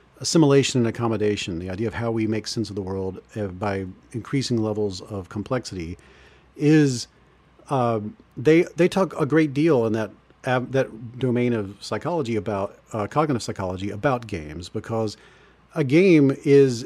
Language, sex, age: English, male, 40-59